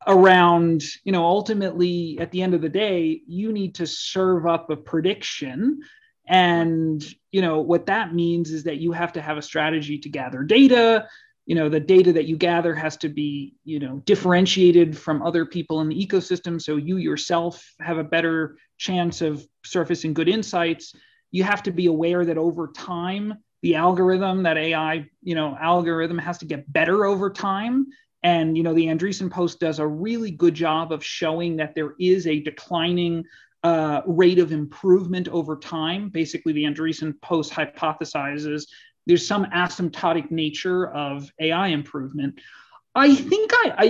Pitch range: 160-190 Hz